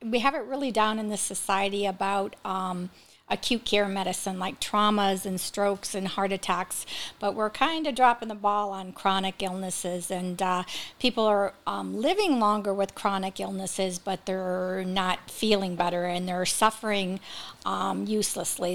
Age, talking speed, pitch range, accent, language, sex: 50-69, 160 wpm, 190-215 Hz, American, English, female